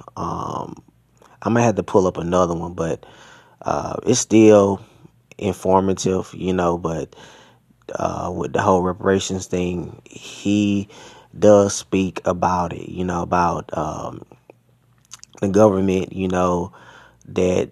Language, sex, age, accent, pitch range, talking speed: English, male, 20-39, American, 90-100 Hz, 125 wpm